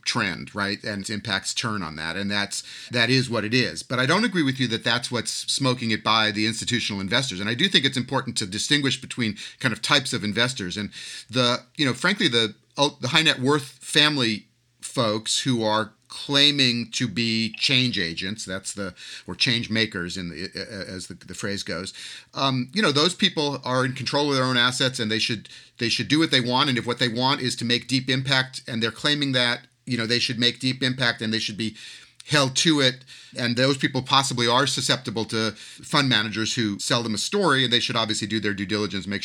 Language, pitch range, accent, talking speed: English, 110-140 Hz, American, 225 wpm